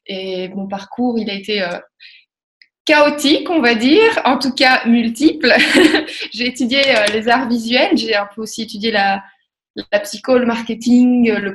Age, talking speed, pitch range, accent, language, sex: 20-39, 150 wpm, 200-250 Hz, French, French, female